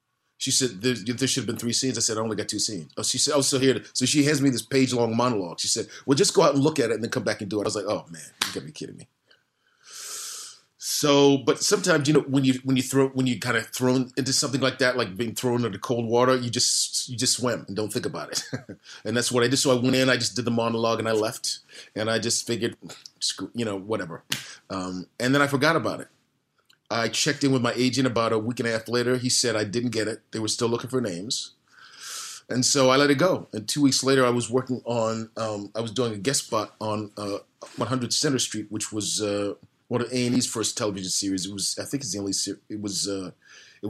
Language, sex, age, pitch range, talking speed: English, male, 30-49, 105-130 Hz, 260 wpm